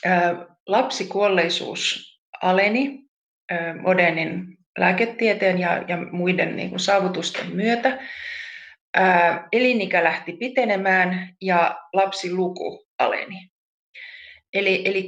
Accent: native